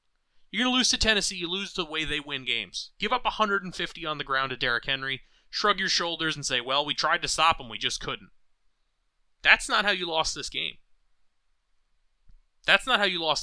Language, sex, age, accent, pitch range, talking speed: English, male, 30-49, American, 130-195 Hz, 215 wpm